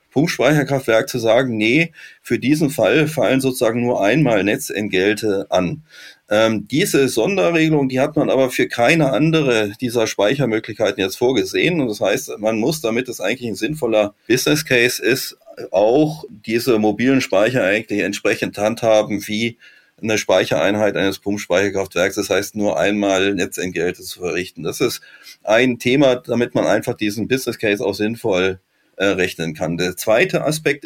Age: 30-49